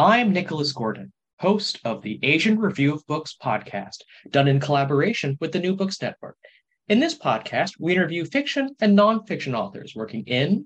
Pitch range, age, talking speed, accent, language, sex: 135-210 Hz, 30-49, 170 wpm, American, English, male